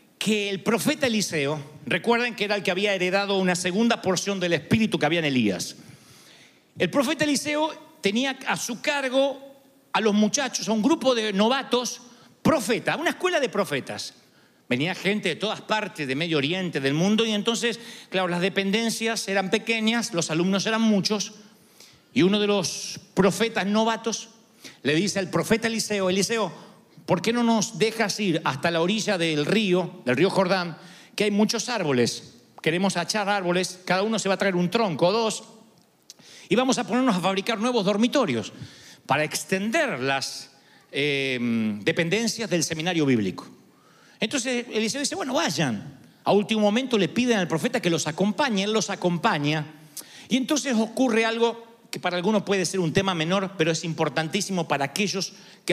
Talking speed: 170 wpm